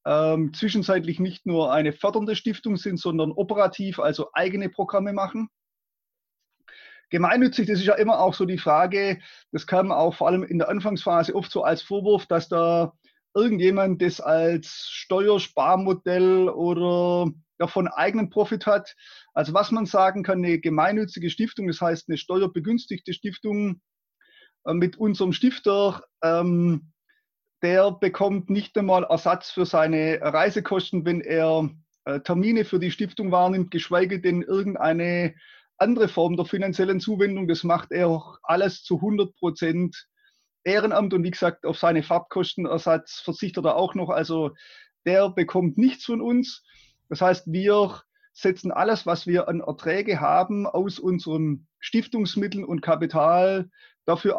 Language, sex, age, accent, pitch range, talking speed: German, male, 30-49, German, 170-205 Hz, 140 wpm